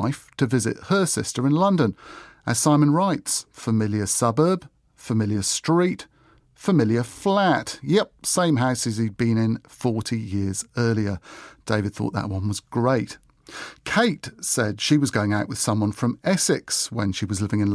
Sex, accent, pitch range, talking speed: male, British, 110-155 Hz, 155 wpm